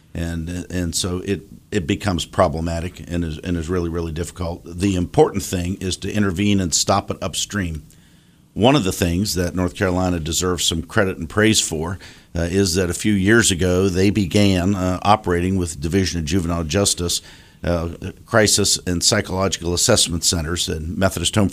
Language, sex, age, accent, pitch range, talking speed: English, male, 50-69, American, 85-100 Hz, 175 wpm